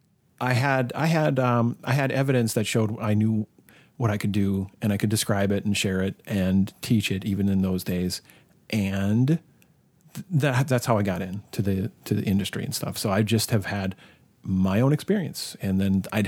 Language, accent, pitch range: English, American, 100-125 Hz